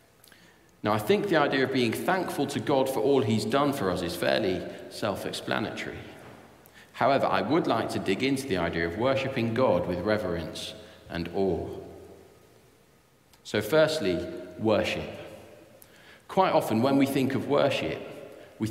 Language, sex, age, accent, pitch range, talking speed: English, male, 40-59, British, 105-135 Hz, 150 wpm